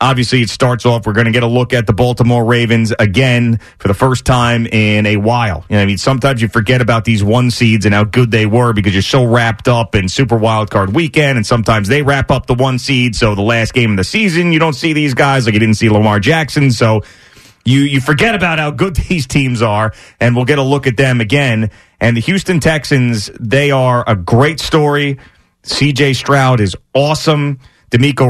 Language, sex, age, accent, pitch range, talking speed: English, male, 30-49, American, 110-140 Hz, 225 wpm